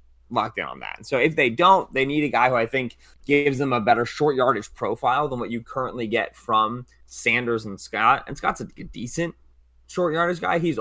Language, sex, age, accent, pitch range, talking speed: English, male, 20-39, American, 105-130 Hz, 215 wpm